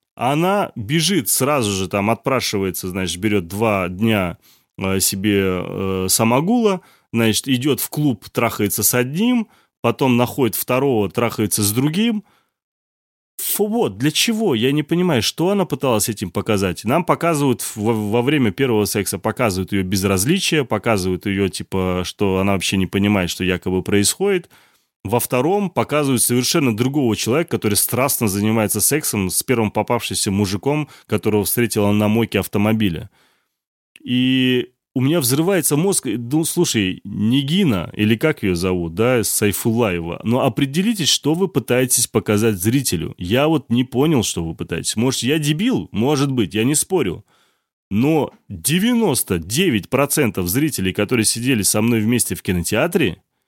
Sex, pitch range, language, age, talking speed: male, 100-140 Hz, Russian, 30-49, 140 wpm